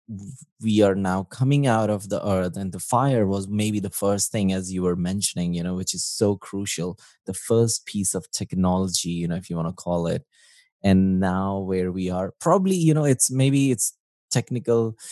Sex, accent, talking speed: male, Indian, 200 wpm